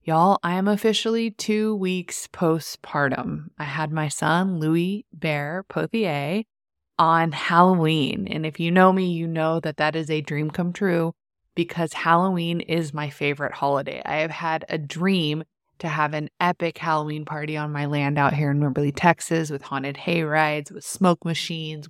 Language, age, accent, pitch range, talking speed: English, 20-39, American, 150-185 Hz, 170 wpm